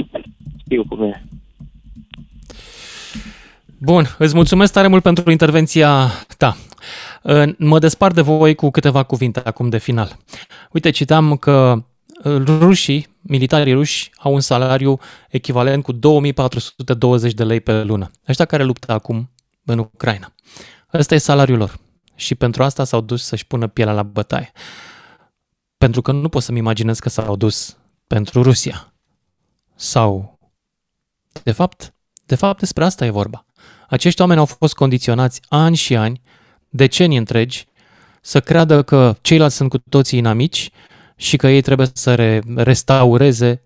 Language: Romanian